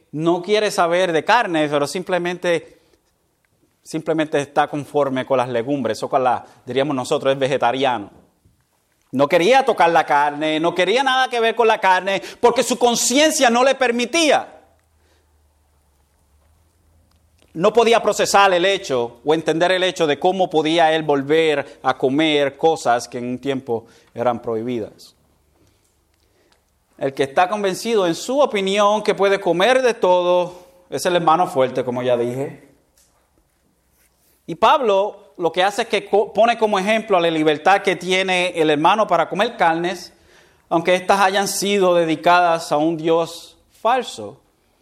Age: 30-49